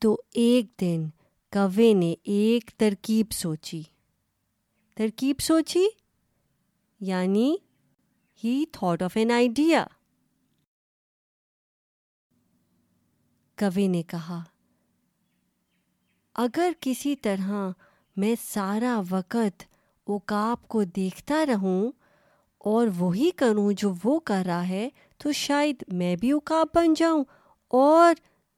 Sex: female